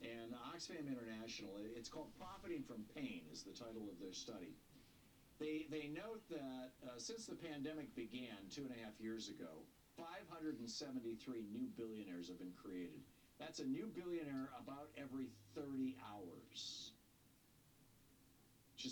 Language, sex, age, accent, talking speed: English, male, 60-79, American, 140 wpm